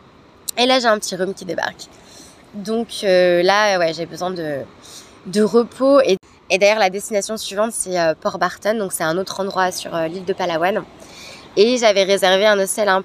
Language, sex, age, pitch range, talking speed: French, female, 20-39, 180-220 Hz, 200 wpm